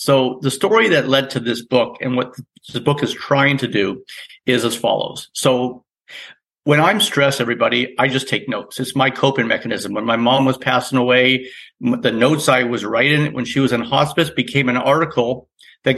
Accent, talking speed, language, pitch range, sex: American, 195 wpm, English, 125-150 Hz, male